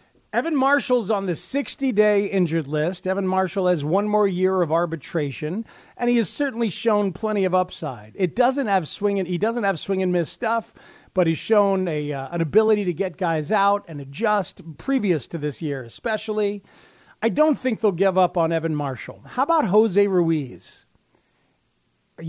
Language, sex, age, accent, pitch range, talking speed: English, male, 40-59, American, 160-215 Hz, 180 wpm